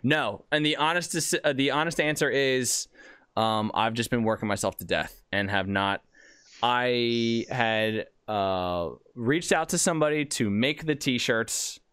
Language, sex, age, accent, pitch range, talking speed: English, male, 20-39, American, 100-130 Hz, 150 wpm